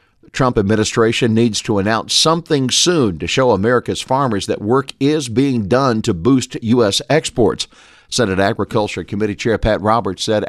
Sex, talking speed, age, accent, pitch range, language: male, 155 wpm, 50-69, American, 95-120 Hz, English